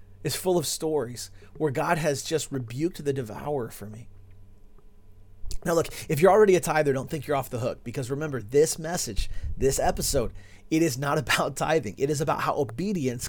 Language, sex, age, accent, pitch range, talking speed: English, male, 40-59, American, 100-145 Hz, 190 wpm